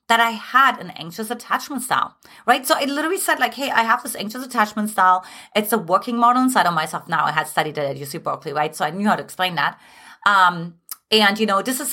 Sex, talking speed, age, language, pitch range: female, 245 wpm, 30-49, English, 195-280 Hz